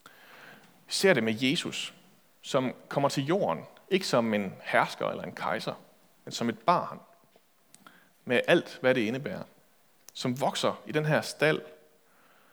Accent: native